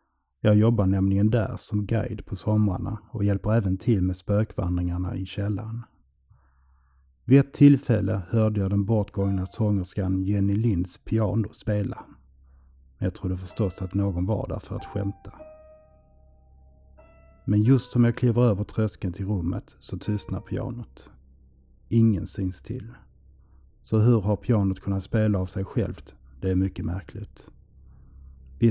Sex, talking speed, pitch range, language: male, 140 wpm, 90-110 Hz, Swedish